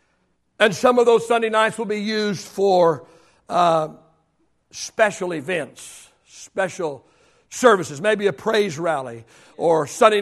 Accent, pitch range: American, 180-250 Hz